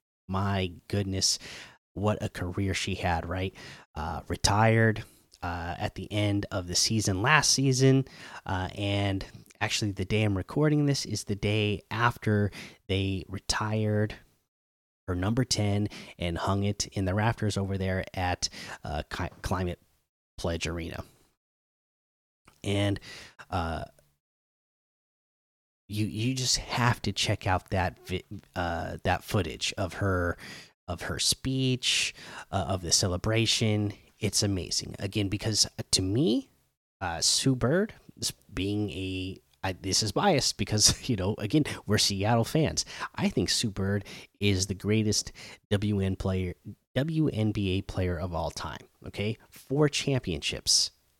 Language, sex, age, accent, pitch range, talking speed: English, male, 30-49, American, 95-110 Hz, 130 wpm